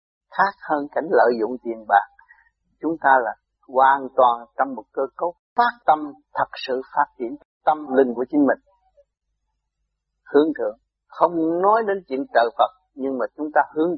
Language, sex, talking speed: Vietnamese, male, 170 wpm